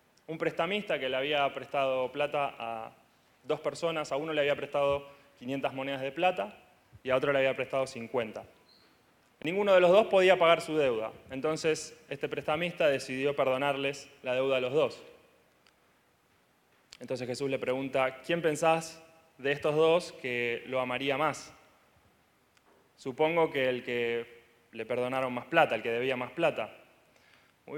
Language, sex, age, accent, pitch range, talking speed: Spanish, male, 20-39, Argentinian, 125-155 Hz, 155 wpm